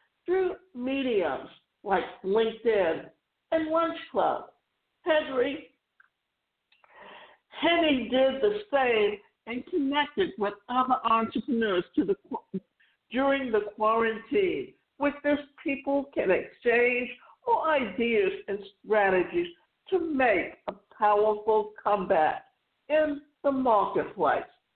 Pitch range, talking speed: 225-330 Hz, 85 wpm